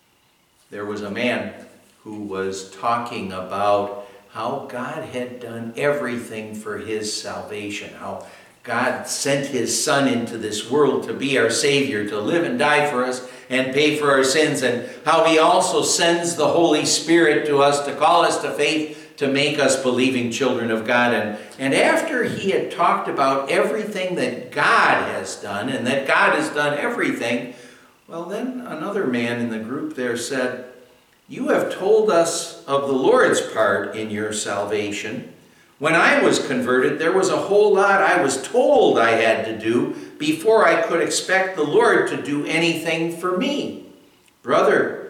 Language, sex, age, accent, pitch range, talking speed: English, male, 60-79, American, 110-160 Hz, 170 wpm